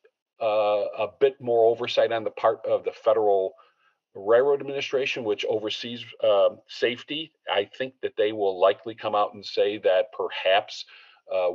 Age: 50-69